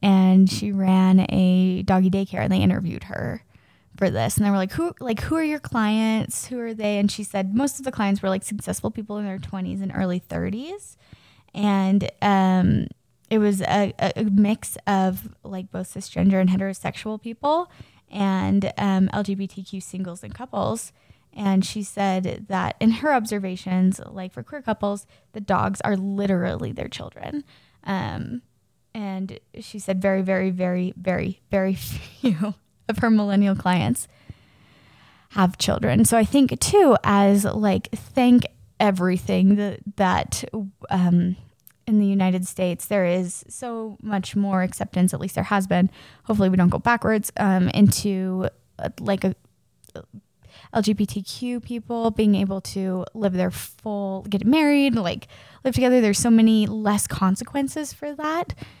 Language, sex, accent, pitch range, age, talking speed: English, female, American, 185-220 Hz, 10-29, 150 wpm